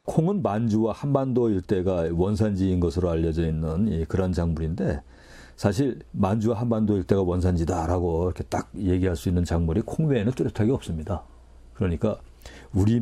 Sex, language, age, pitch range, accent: male, Korean, 50-69, 85-110 Hz, native